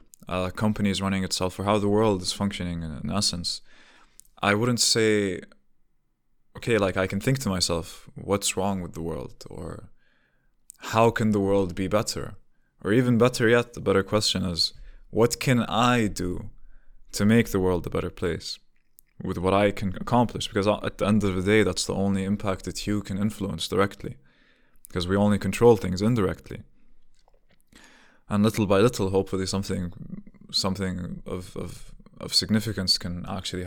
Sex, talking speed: male, 170 wpm